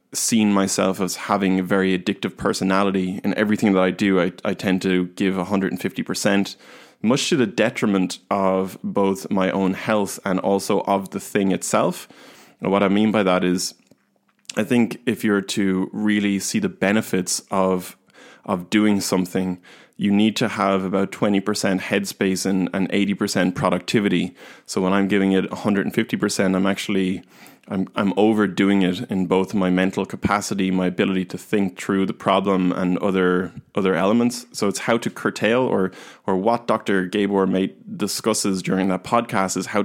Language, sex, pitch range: English, male, 95-100 Hz